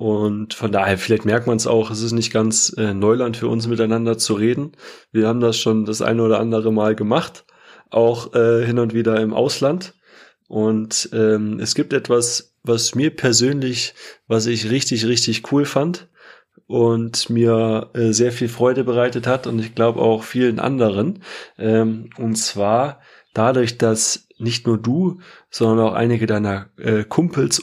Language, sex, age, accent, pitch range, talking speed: German, male, 20-39, German, 110-125 Hz, 170 wpm